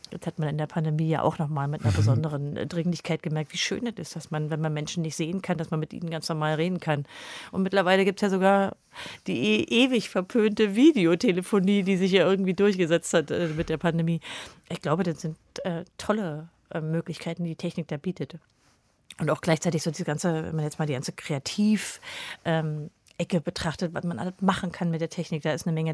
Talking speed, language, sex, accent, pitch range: 220 wpm, German, female, German, 155-190 Hz